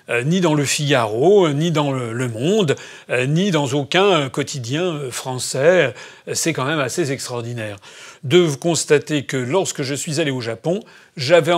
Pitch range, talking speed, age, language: 130-175 Hz, 145 wpm, 40-59, French